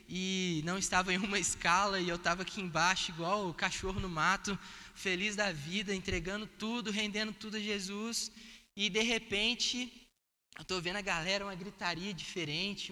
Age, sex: 20-39, male